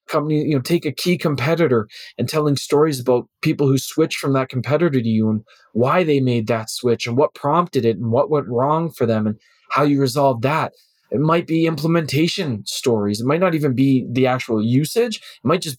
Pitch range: 120-155 Hz